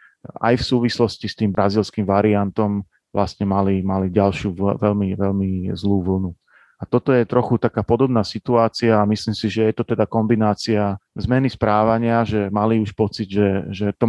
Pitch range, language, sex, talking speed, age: 105-115 Hz, Slovak, male, 165 wpm, 40-59